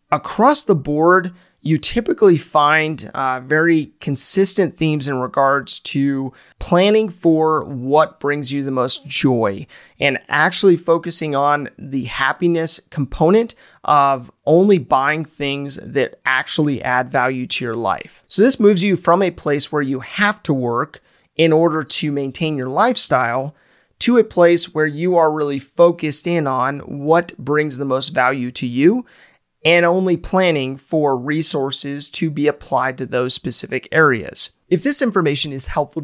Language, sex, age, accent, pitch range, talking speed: English, male, 30-49, American, 135-175 Hz, 150 wpm